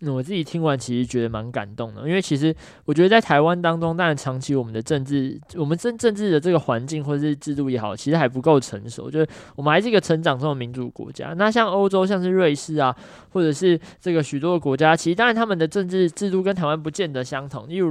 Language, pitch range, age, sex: Chinese, 130-175 Hz, 20-39, male